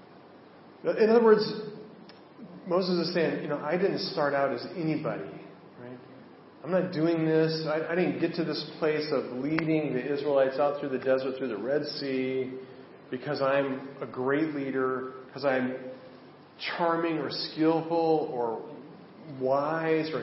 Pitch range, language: 130-160 Hz, English